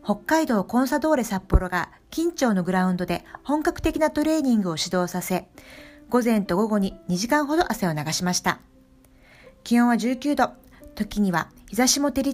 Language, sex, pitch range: Japanese, female, 195-295 Hz